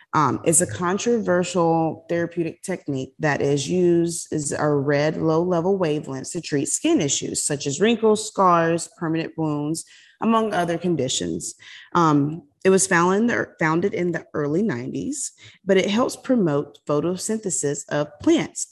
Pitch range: 150-190 Hz